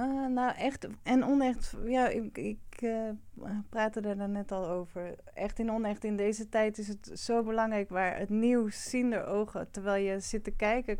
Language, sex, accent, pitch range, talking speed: Dutch, female, Dutch, 180-215 Hz, 190 wpm